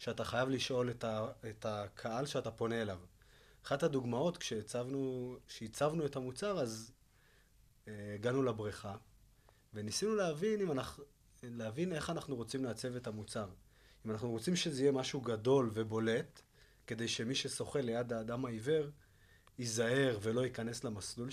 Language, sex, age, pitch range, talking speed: Hebrew, male, 30-49, 115-145 Hz, 125 wpm